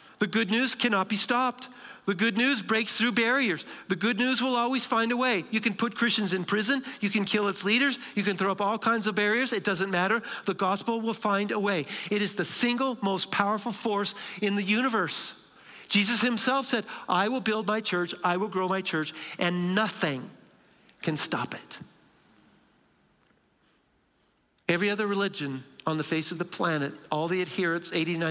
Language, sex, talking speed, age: English, male, 190 wpm, 50-69